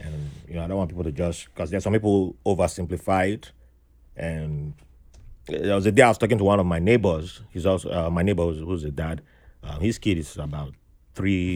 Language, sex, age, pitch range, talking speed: English, male, 30-49, 80-105 Hz, 230 wpm